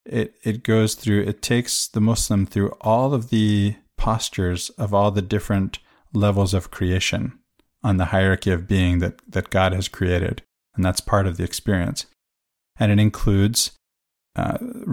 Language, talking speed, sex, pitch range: English, 160 wpm, male, 95-110 Hz